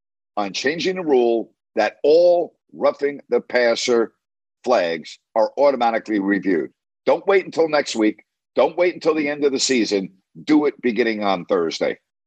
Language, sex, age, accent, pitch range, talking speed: English, male, 50-69, American, 105-160 Hz, 150 wpm